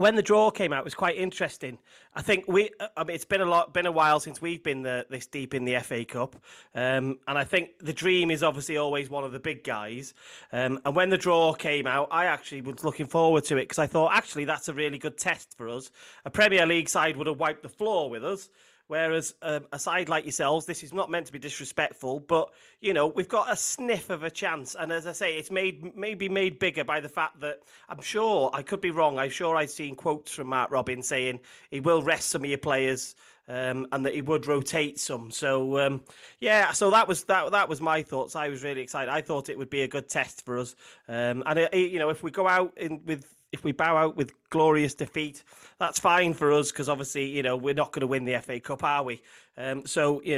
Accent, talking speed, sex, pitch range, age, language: British, 250 wpm, male, 135-170 Hz, 30-49, English